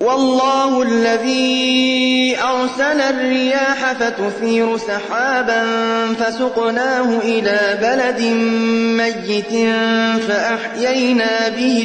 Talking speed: 60 wpm